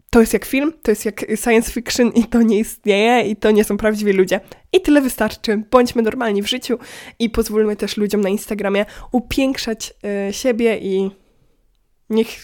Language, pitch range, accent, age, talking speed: Polish, 205-240 Hz, native, 20-39, 175 wpm